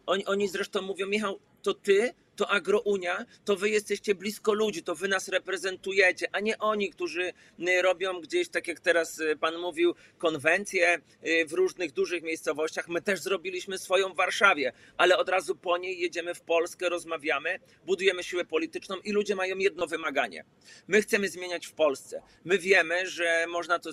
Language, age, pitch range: Polish, 40-59, 155-190 Hz